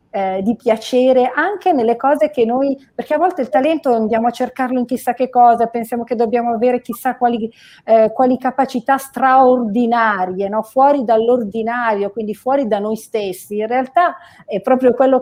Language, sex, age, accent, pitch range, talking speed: Italian, female, 40-59, native, 210-250 Hz, 170 wpm